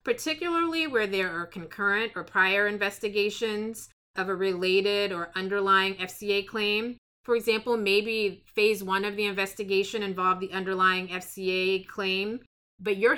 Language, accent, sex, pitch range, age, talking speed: English, American, female, 190-225 Hz, 30-49, 135 wpm